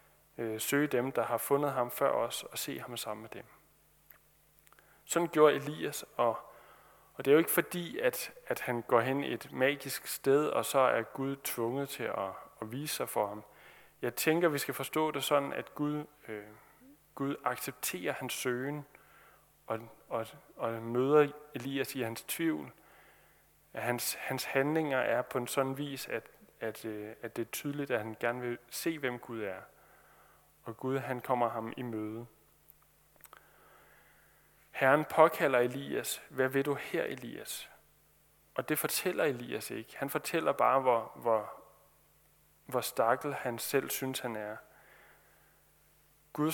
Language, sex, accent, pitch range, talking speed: Danish, male, native, 120-145 Hz, 155 wpm